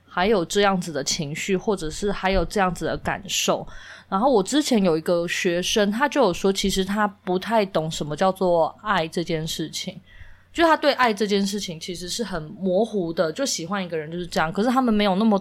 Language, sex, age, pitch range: Chinese, female, 20-39, 170-215 Hz